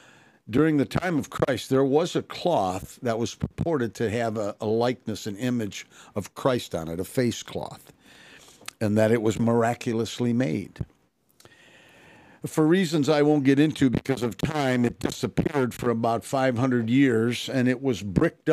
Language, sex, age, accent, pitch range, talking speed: English, male, 60-79, American, 105-135 Hz, 165 wpm